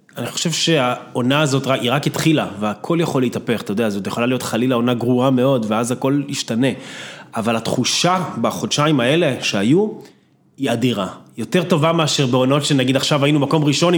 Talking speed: 165 wpm